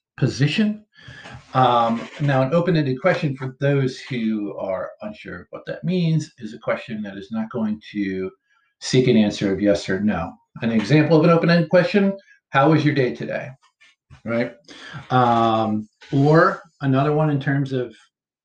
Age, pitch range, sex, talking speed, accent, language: 50-69, 125-170 Hz, male, 160 wpm, American, English